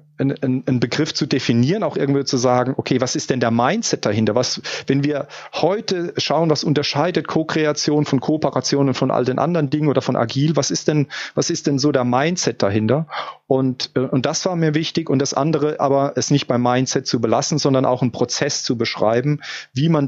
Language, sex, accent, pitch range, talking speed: German, male, German, 125-150 Hz, 205 wpm